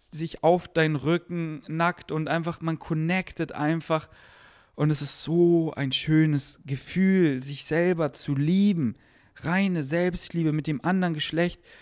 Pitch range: 120-160 Hz